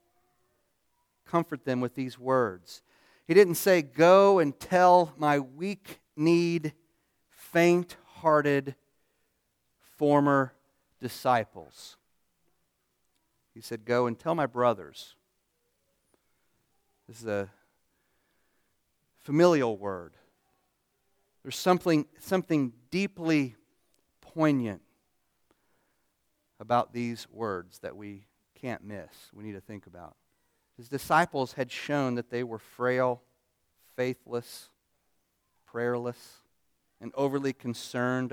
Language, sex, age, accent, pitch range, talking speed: English, male, 40-59, American, 110-145 Hz, 90 wpm